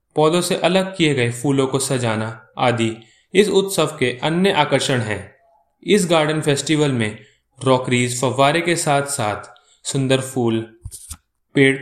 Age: 20-39